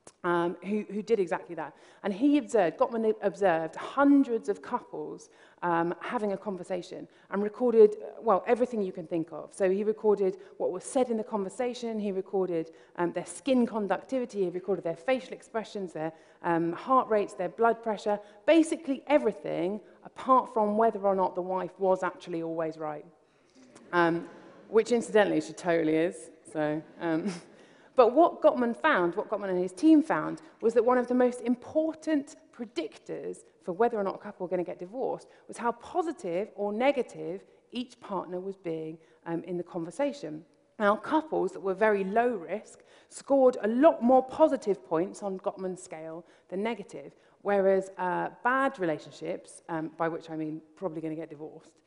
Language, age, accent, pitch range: Chinese, 30-49, British, 170-245 Hz